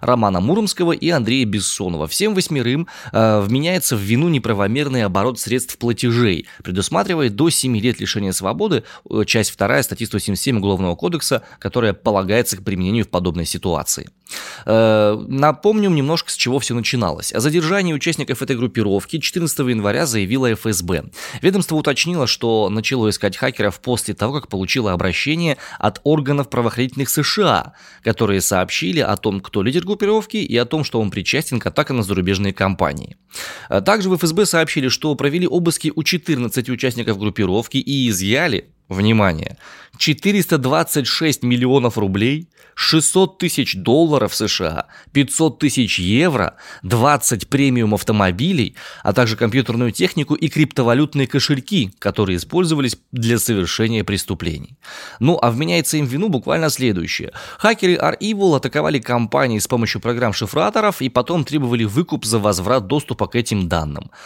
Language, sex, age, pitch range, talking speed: Russian, male, 20-39, 105-150 Hz, 135 wpm